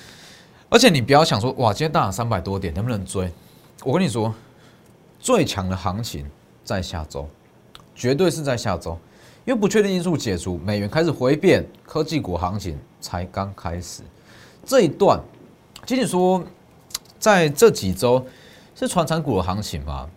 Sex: male